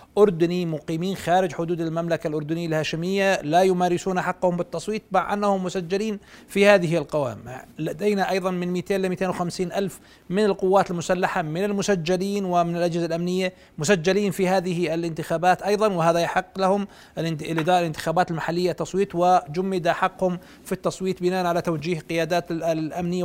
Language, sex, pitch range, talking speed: Arabic, male, 165-195 Hz, 135 wpm